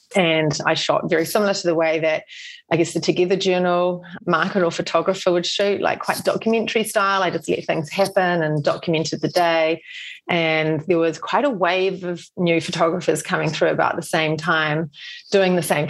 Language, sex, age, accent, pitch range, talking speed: English, female, 30-49, Australian, 160-195 Hz, 190 wpm